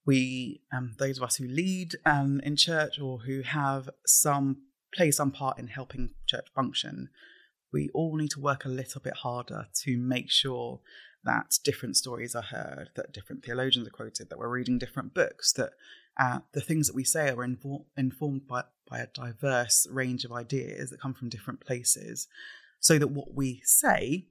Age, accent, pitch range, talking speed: 20-39, British, 125-145 Hz, 185 wpm